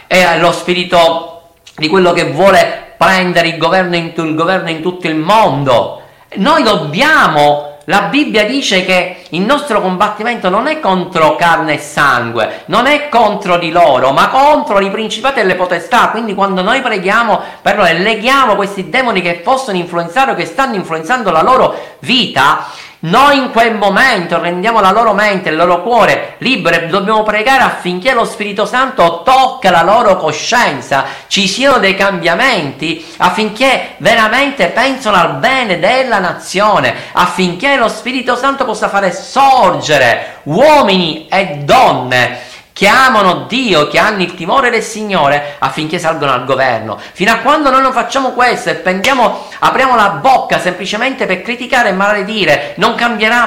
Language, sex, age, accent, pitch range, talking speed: Italian, male, 50-69, native, 170-230 Hz, 155 wpm